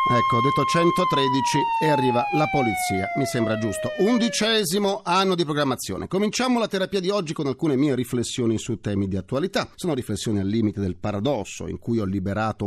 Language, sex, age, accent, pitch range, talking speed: Italian, male, 40-59, native, 120-180 Hz, 180 wpm